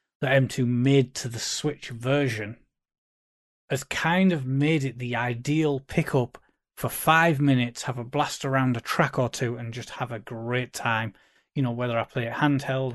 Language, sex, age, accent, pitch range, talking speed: English, male, 30-49, British, 125-165 Hz, 180 wpm